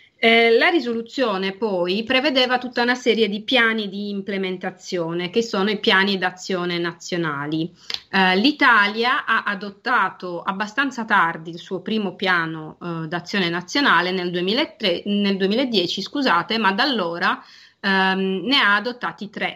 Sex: female